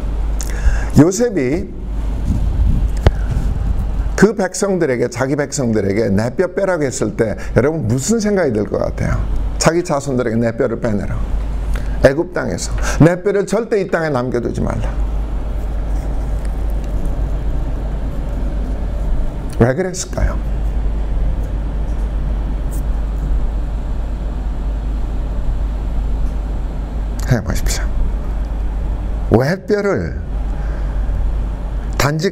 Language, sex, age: Korean, male, 50-69